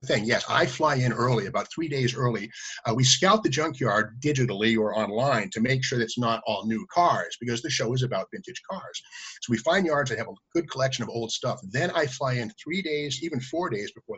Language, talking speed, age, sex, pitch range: English, 235 wpm, 50-69, male, 115-145 Hz